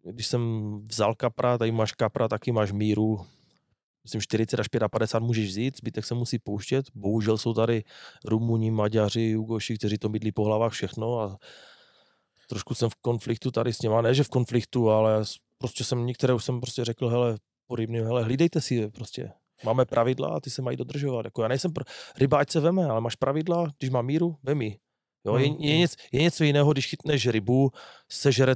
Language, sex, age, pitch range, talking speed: Czech, male, 30-49, 110-130 Hz, 185 wpm